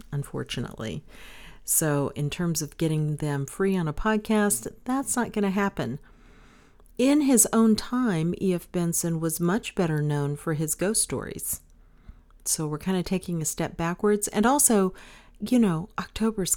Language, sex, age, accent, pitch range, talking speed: English, female, 40-59, American, 155-210 Hz, 155 wpm